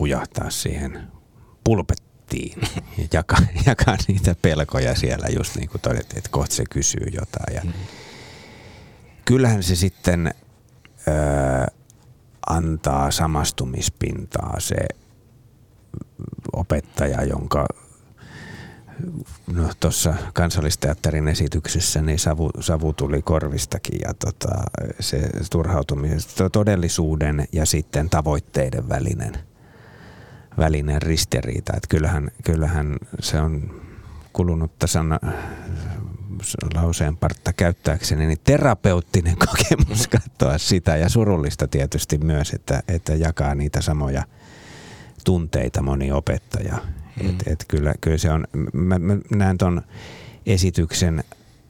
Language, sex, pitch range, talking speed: Finnish, male, 75-100 Hz, 100 wpm